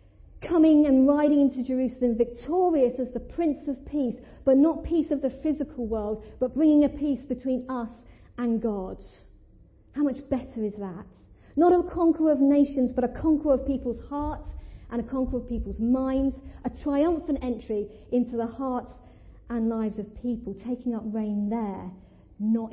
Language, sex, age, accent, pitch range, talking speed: English, female, 50-69, British, 205-280 Hz, 165 wpm